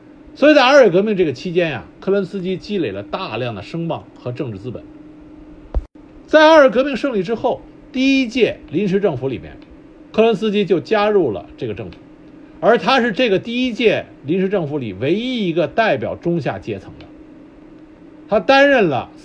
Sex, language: male, Chinese